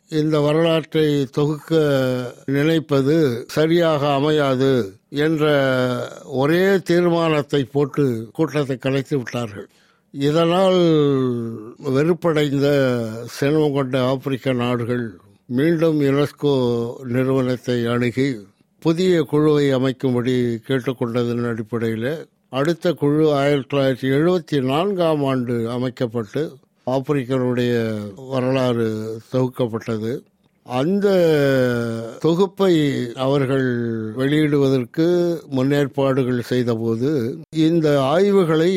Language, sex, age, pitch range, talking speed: Tamil, male, 60-79, 130-160 Hz, 75 wpm